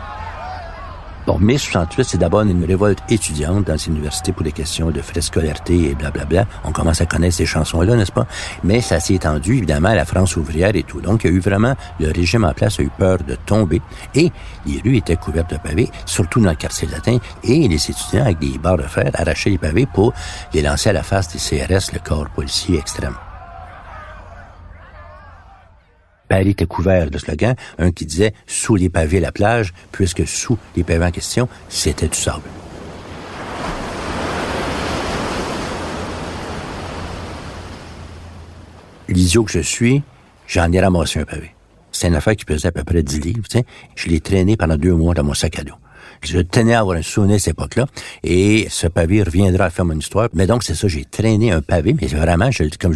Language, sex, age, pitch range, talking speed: French, male, 60-79, 80-100 Hz, 195 wpm